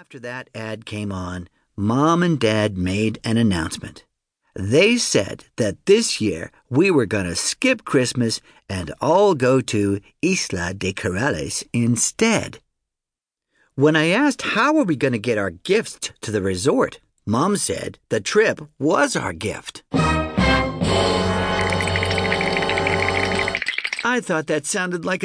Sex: male